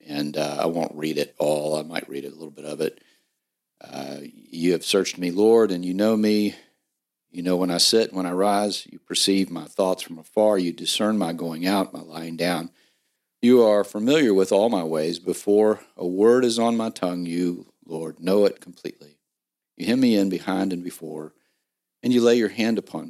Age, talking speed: 50-69, 205 wpm